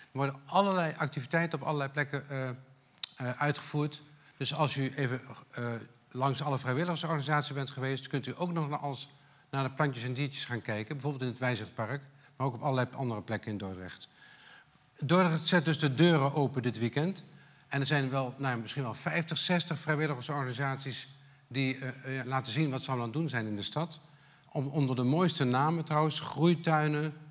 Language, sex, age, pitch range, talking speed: Dutch, male, 50-69, 130-150 Hz, 180 wpm